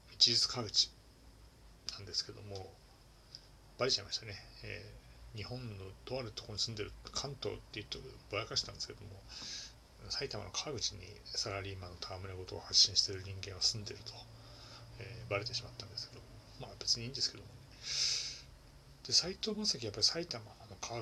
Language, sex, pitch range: Japanese, male, 100-130 Hz